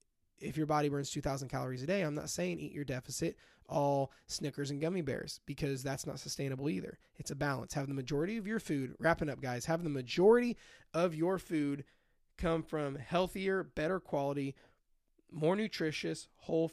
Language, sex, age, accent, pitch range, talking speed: English, male, 20-39, American, 140-180 Hz, 180 wpm